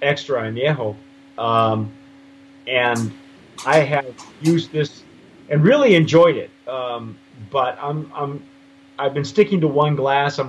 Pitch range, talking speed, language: 130-185 Hz, 130 wpm, English